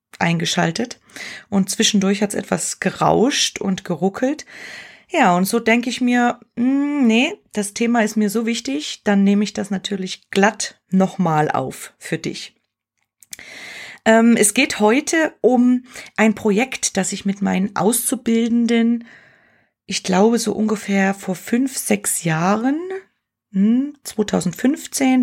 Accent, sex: German, female